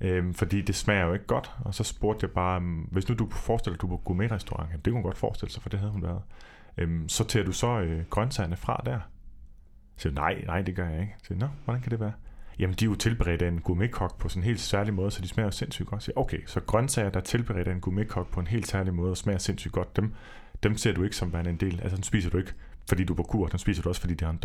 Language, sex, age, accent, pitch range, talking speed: Danish, male, 30-49, native, 90-110 Hz, 290 wpm